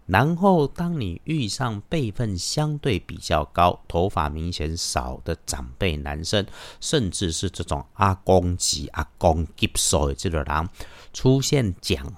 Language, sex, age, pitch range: Chinese, male, 50-69, 80-110 Hz